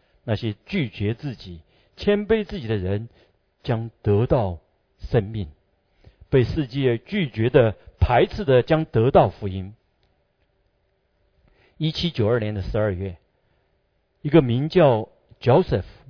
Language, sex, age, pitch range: Chinese, male, 50-69, 100-150 Hz